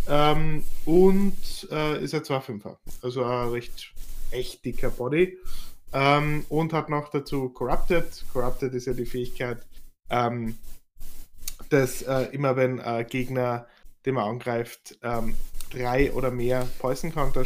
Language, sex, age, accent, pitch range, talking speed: German, male, 10-29, German, 120-140 Hz, 130 wpm